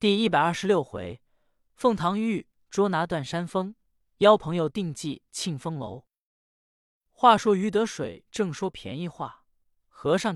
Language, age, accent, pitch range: Chinese, 20-39, native, 130-200 Hz